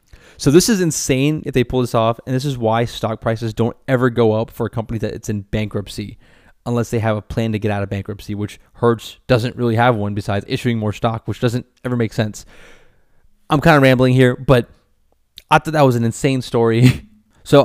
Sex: male